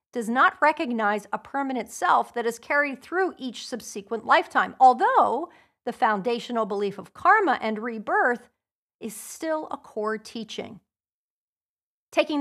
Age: 40-59